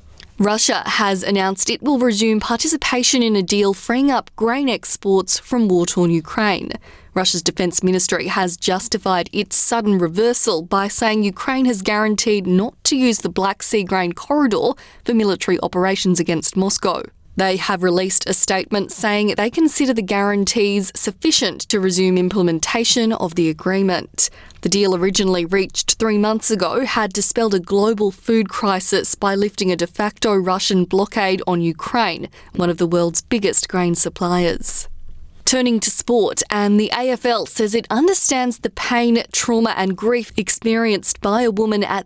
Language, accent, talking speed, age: English, Australian, 155 wpm, 20-39